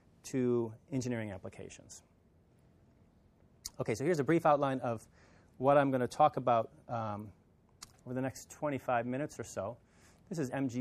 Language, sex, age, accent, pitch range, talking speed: English, male, 30-49, American, 105-125 Hz, 150 wpm